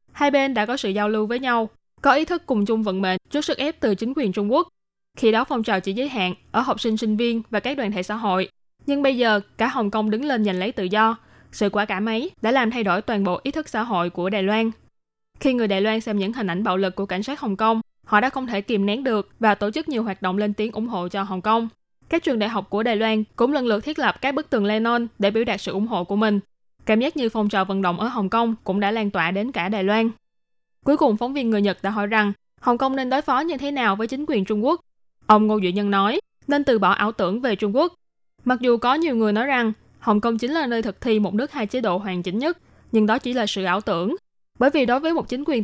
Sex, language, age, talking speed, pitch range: female, Vietnamese, 10-29, 290 wpm, 205-255 Hz